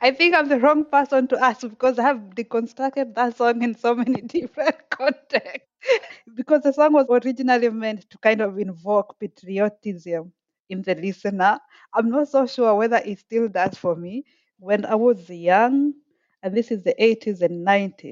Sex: female